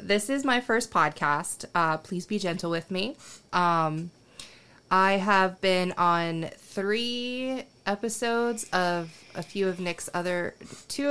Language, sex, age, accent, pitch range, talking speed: English, female, 20-39, American, 155-185 Hz, 135 wpm